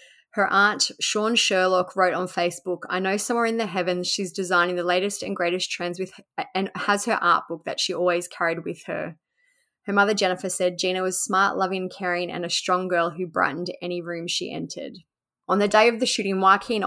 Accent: Australian